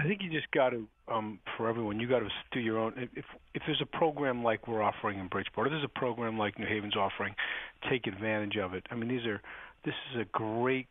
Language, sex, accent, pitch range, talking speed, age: English, male, American, 105-130 Hz, 250 wpm, 40-59